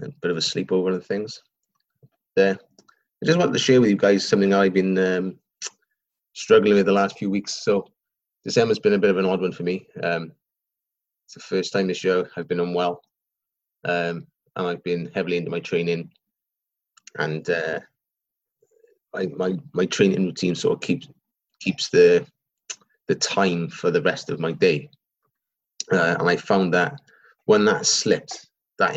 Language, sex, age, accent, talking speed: English, male, 20-39, British, 175 wpm